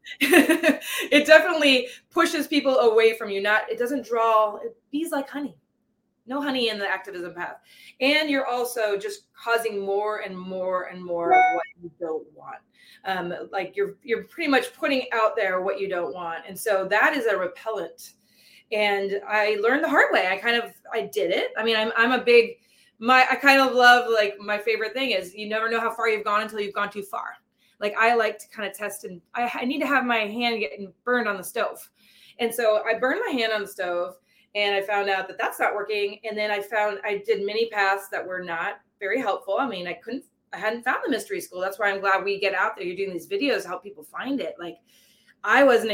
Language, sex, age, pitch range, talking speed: English, female, 20-39, 195-255 Hz, 225 wpm